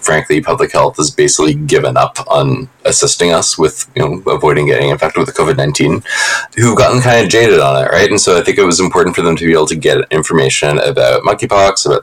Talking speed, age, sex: 225 wpm, 20-39, male